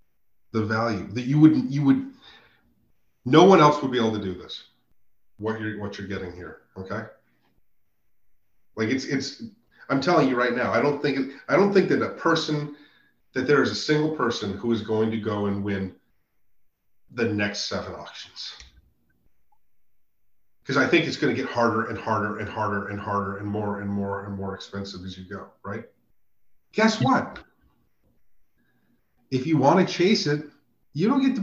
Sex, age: male, 40-59